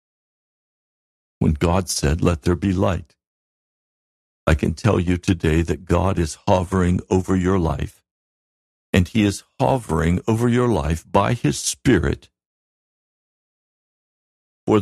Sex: male